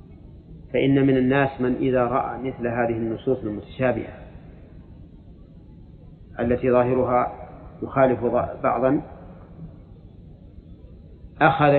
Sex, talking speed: male, 75 wpm